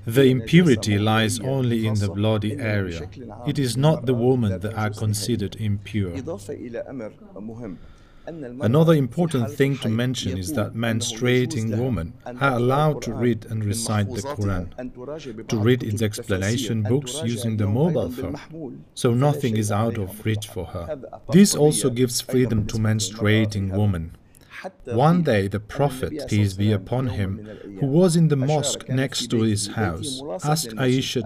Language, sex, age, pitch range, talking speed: English, male, 40-59, 105-130 Hz, 150 wpm